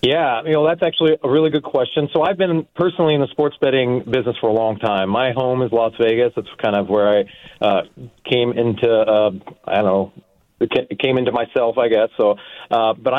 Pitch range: 110-140 Hz